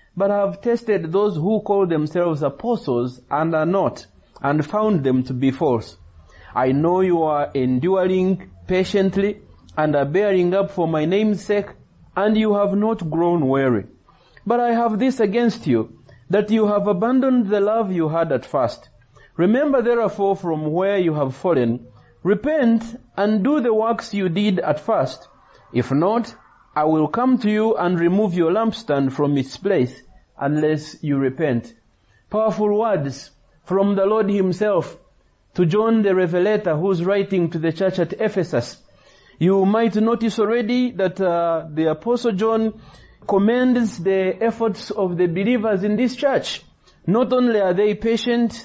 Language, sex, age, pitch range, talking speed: English, male, 30-49, 155-220 Hz, 160 wpm